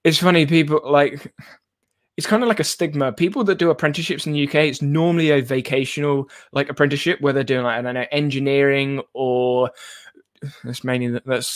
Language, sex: English, male